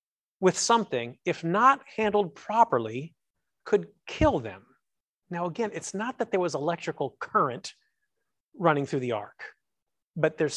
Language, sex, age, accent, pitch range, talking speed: English, male, 40-59, American, 165-245 Hz, 135 wpm